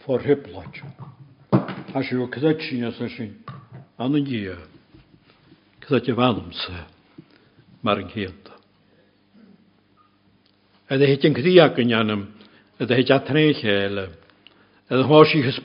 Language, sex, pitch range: English, male, 100-130 Hz